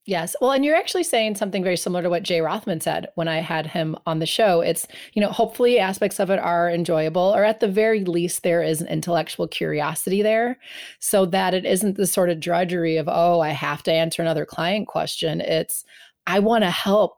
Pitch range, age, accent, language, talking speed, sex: 170-215 Hz, 30-49, American, English, 220 wpm, female